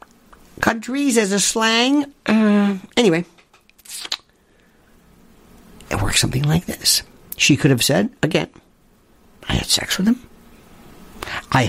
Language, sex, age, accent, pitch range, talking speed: English, male, 50-69, American, 150-230 Hz, 115 wpm